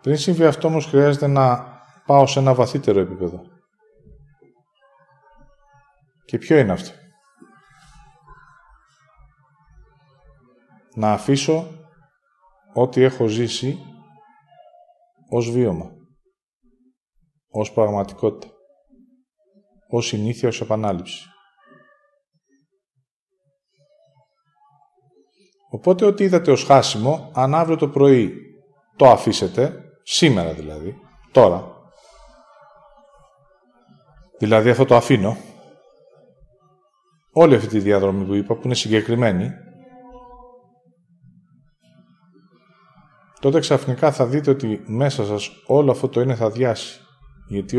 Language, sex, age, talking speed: Greek, male, 20-39, 85 wpm